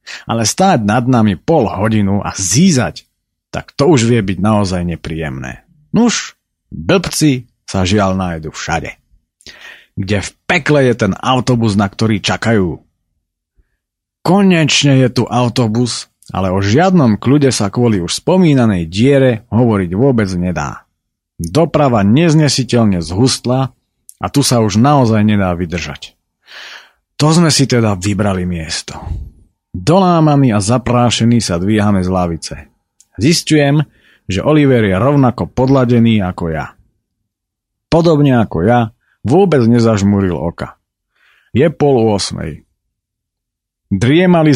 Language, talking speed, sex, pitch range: Slovak, 115 wpm, male, 90-125 Hz